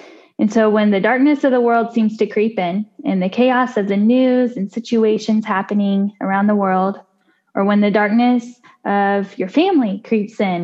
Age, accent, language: 10-29, American, English